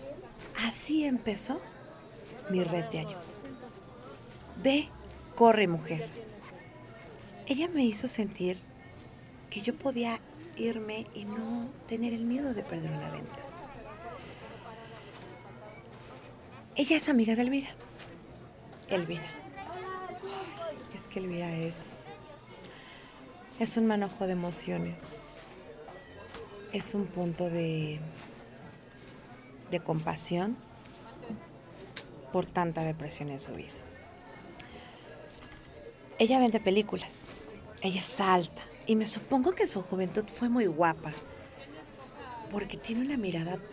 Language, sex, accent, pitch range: Spanish, female, Mexican, 170-235 Hz